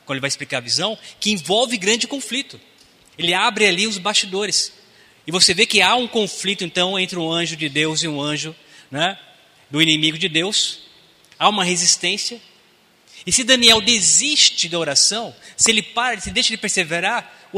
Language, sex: Portuguese, male